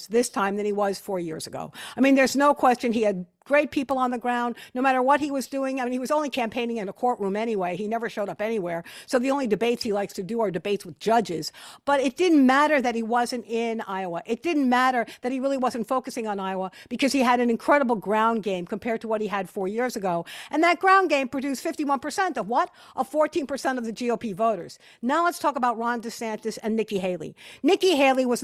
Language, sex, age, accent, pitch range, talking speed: English, female, 50-69, American, 210-265 Hz, 240 wpm